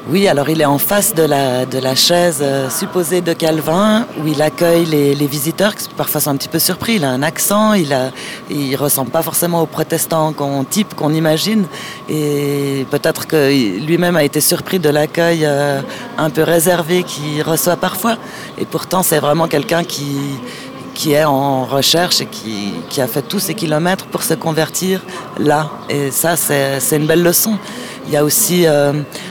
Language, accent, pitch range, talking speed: French, French, 145-175 Hz, 190 wpm